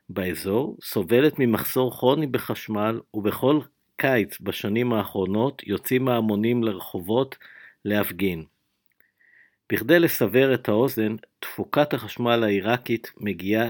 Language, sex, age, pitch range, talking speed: English, male, 50-69, 100-125 Hz, 90 wpm